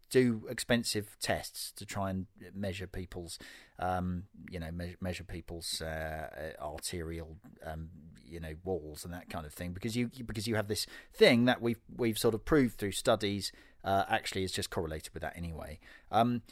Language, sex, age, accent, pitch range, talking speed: English, male, 40-59, British, 95-125 Hz, 180 wpm